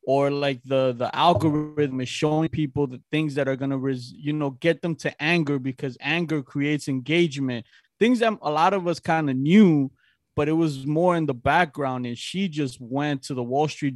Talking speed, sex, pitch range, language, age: 205 wpm, male, 130-155 Hz, English, 20-39